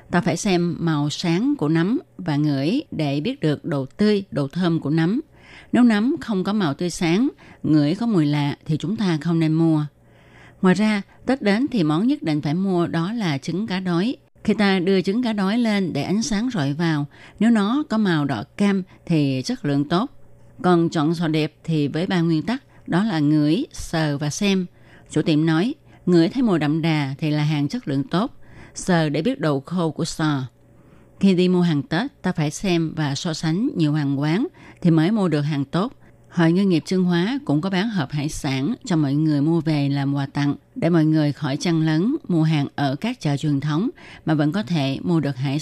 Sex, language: female, Vietnamese